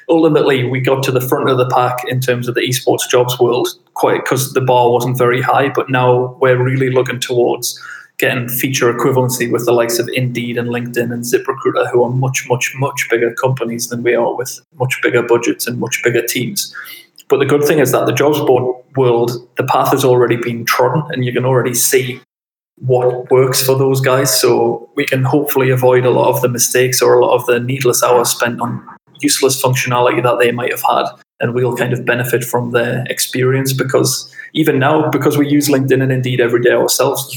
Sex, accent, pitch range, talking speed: male, British, 120-130 Hz, 210 wpm